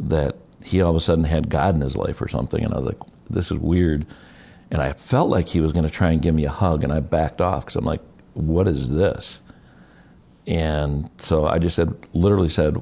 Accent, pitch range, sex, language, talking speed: American, 75-90 Hz, male, English, 235 wpm